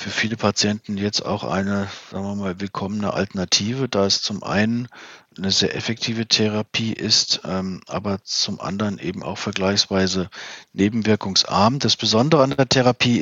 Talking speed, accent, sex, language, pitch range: 150 wpm, German, male, German, 95-115 Hz